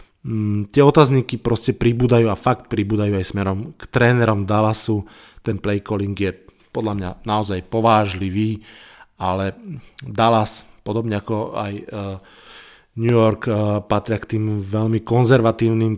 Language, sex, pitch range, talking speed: Slovak, male, 110-135 Hz, 120 wpm